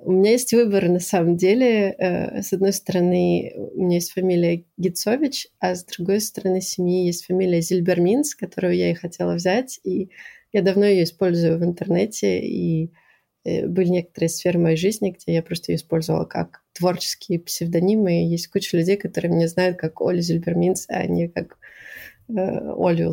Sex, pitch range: female, 170-195 Hz